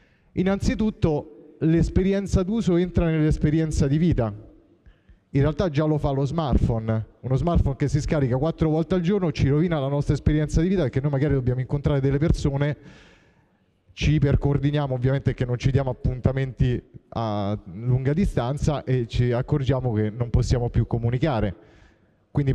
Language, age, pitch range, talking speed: Italian, 30-49, 125-155 Hz, 150 wpm